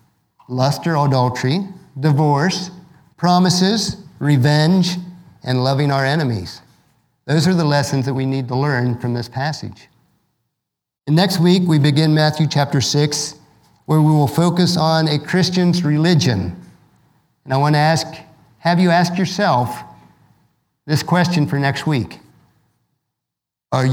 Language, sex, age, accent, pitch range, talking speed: English, male, 50-69, American, 125-155 Hz, 130 wpm